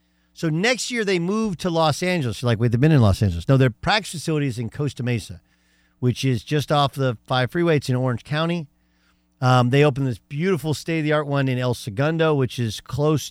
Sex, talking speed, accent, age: male, 225 wpm, American, 50-69